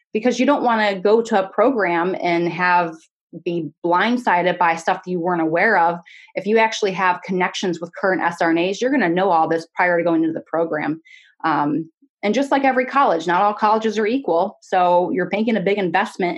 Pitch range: 170-215 Hz